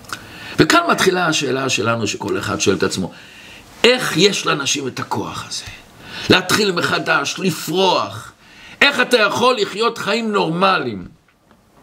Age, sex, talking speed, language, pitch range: 60-79, male, 120 wpm, Hebrew, 145-215 Hz